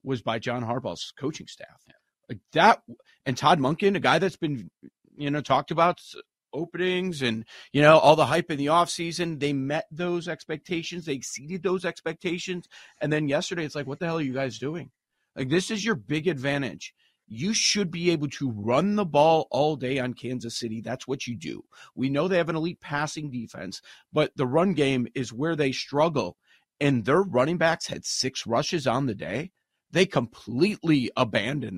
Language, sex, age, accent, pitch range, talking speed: English, male, 40-59, American, 135-175 Hz, 190 wpm